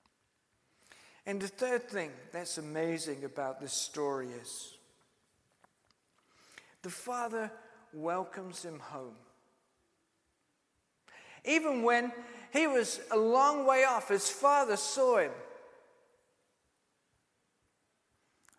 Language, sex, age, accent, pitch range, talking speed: English, male, 50-69, British, 195-250 Hz, 90 wpm